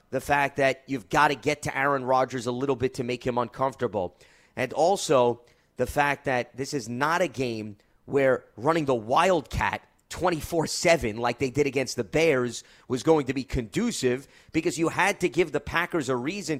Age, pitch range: 30-49, 130-175 Hz